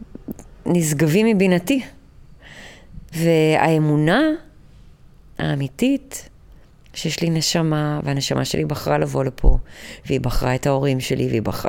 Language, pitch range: Hebrew, 150-225 Hz